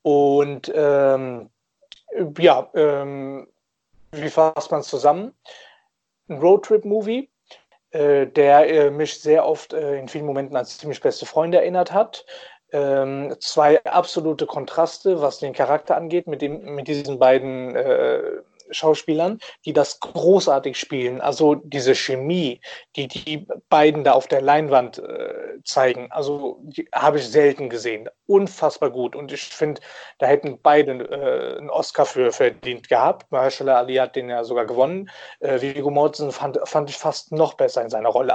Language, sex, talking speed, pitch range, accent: German, male, 150 wpm, 140-165 Hz, German